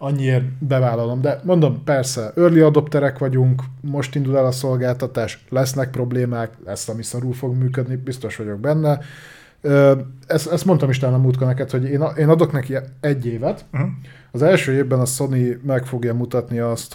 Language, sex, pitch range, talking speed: Hungarian, male, 115-140 Hz, 155 wpm